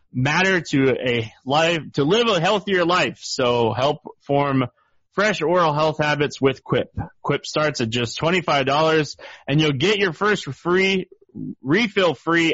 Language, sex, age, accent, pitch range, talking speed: English, male, 30-49, American, 130-165 Hz, 150 wpm